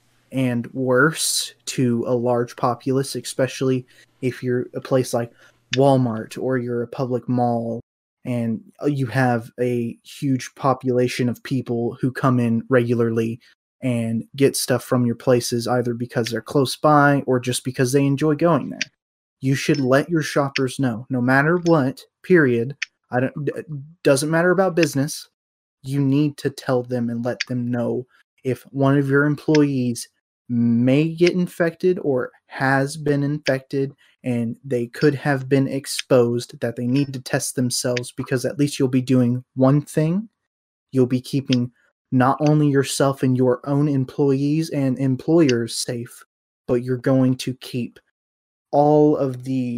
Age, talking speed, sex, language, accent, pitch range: 20-39, 150 wpm, male, English, American, 125-140 Hz